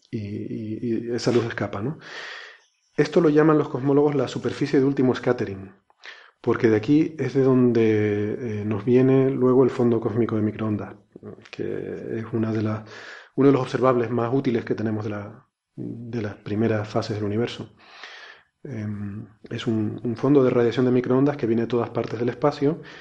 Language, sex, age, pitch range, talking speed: Spanish, male, 30-49, 110-130 Hz, 160 wpm